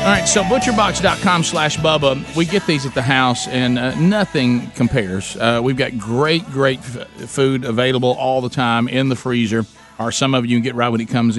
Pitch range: 120-150 Hz